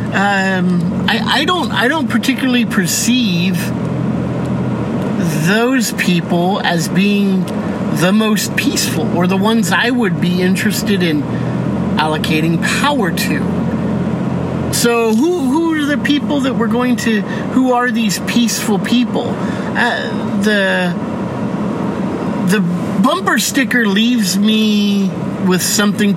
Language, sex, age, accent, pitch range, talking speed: English, male, 50-69, American, 185-220 Hz, 115 wpm